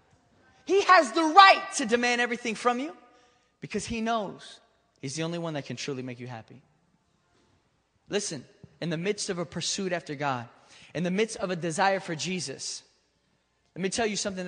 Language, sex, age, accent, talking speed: English, male, 20-39, American, 180 wpm